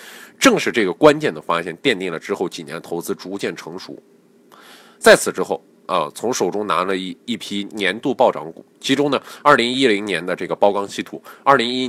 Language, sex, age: Chinese, male, 20-39